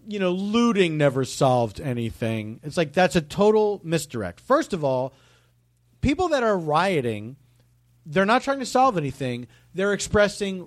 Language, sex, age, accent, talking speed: English, male, 40-59, American, 150 wpm